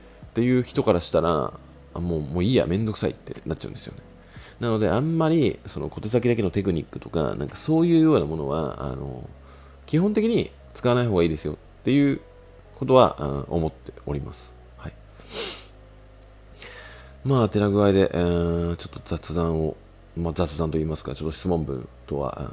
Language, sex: Japanese, male